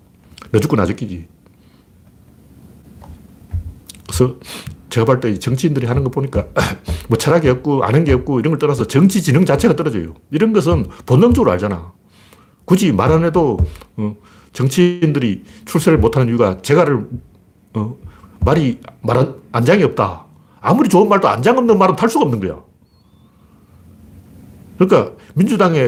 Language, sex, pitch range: Korean, male, 95-145 Hz